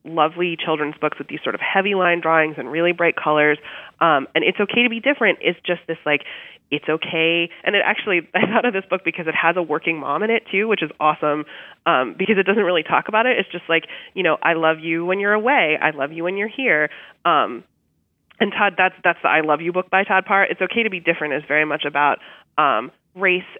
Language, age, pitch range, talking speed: English, 20-39, 155-185 Hz, 245 wpm